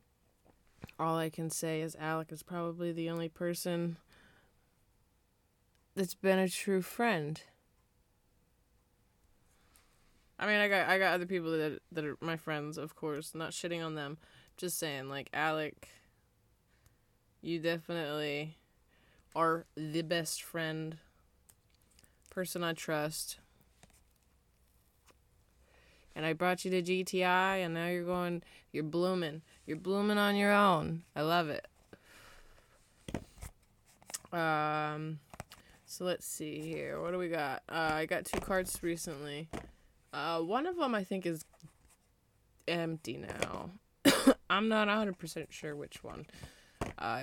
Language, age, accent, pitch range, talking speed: English, 20-39, American, 150-180 Hz, 125 wpm